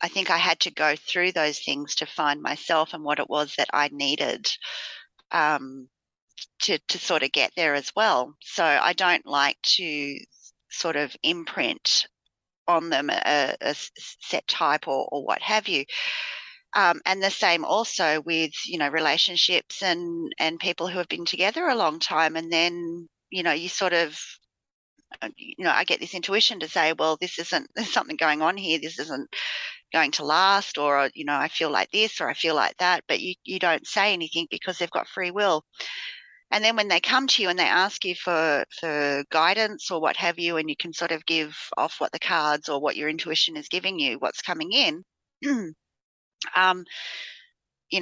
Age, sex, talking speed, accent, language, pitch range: 30-49, female, 195 wpm, Australian, English, 155-190 Hz